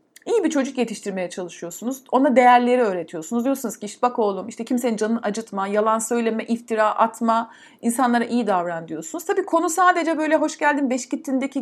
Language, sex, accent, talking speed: Turkish, female, native, 170 wpm